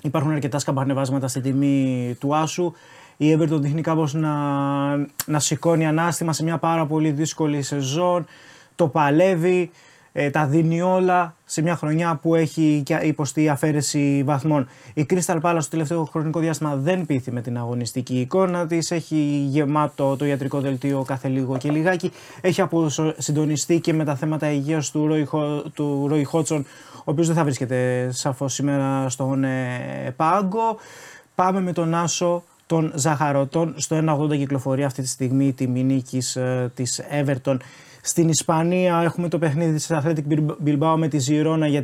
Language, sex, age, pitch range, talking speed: Greek, male, 20-39, 140-165 Hz, 155 wpm